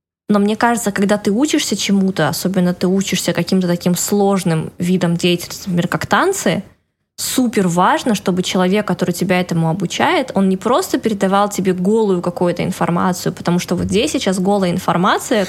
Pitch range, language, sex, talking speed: 180-210 Hz, Russian, female, 160 wpm